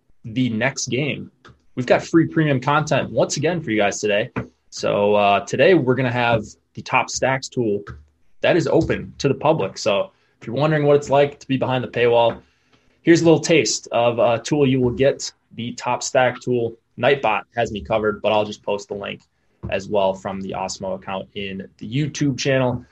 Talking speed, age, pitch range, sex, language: 200 wpm, 20-39, 105-130 Hz, male, English